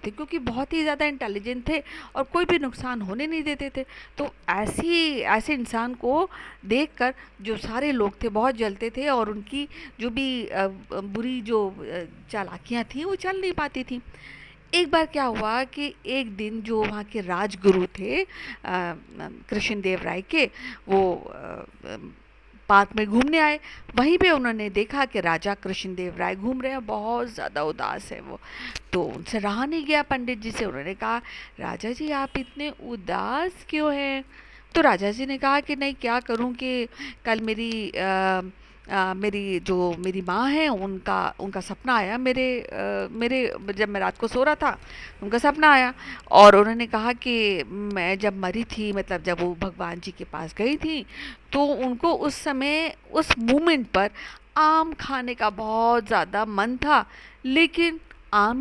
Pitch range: 205-285 Hz